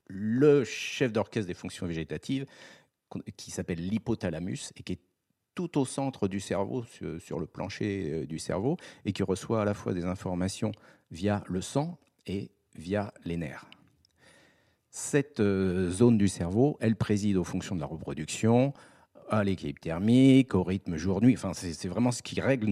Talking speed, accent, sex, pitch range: 160 wpm, French, male, 95-125 Hz